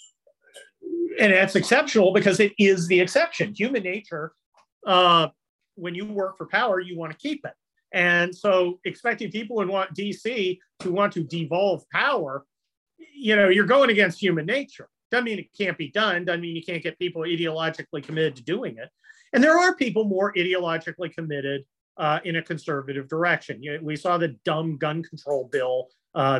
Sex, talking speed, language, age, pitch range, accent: male, 175 wpm, English, 40-59, 150-205 Hz, American